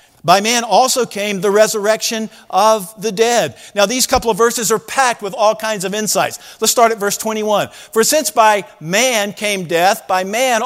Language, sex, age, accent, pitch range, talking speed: English, male, 50-69, American, 205-260 Hz, 190 wpm